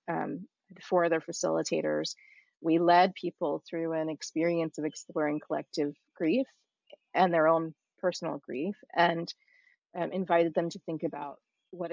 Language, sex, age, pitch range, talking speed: English, female, 30-49, 155-180 Hz, 135 wpm